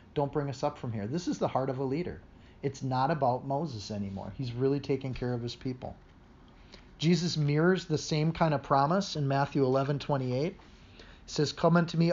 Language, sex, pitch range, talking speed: English, male, 115-145 Hz, 195 wpm